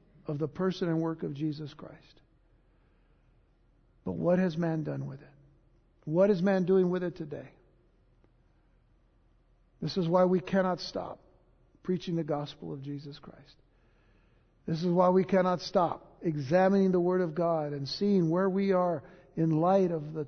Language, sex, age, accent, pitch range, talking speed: English, male, 60-79, American, 150-185 Hz, 160 wpm